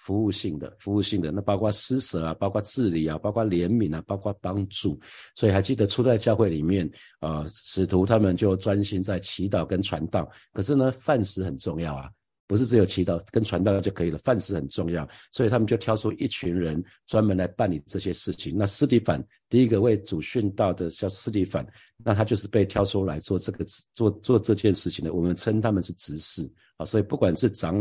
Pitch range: 85-110 Hz